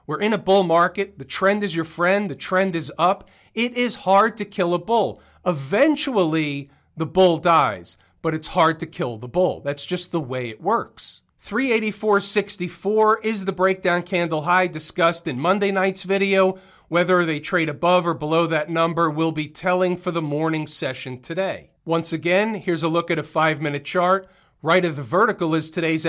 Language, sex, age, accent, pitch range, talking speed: English, male, 40-59, American, 160-190 Hz, 185 wpm